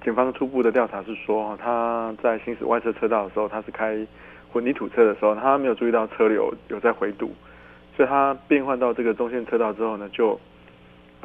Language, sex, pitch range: Chinese, male, 100-125 Hz